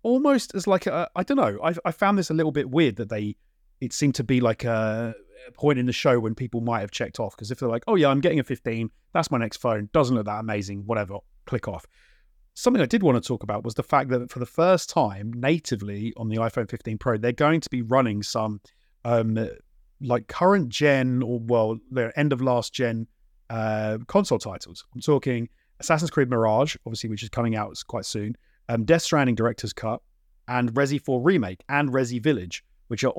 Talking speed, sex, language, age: 220 wpm, male, English, 30-49